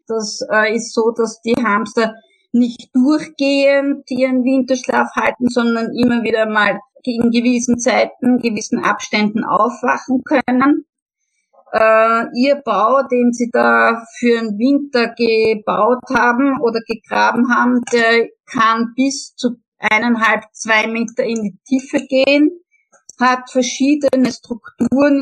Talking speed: 120 wpm